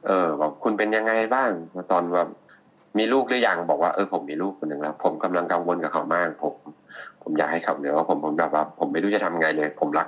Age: 30-49